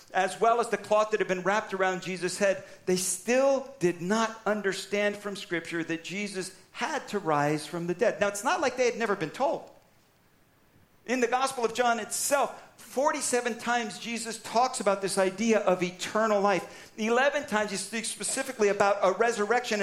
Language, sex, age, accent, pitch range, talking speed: English, male, 50-69, American, 195-260 Hz, 180 wpm